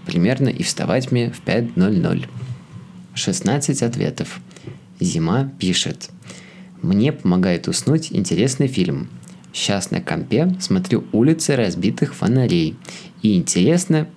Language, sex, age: Russian, male, 20-39